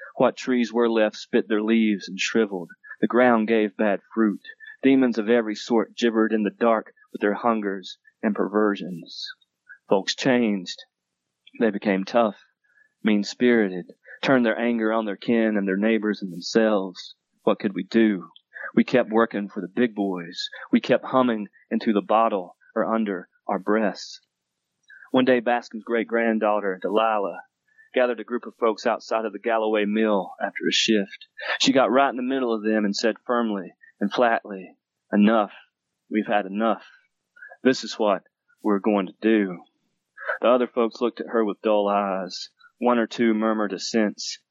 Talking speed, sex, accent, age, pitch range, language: 165 wpm, male, American, 30-49, 100-115 Hz, English